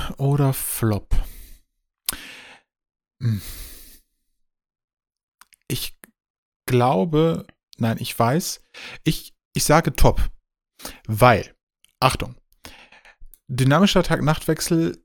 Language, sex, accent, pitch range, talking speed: German, male, German, 115-155 Hz, 65 wpm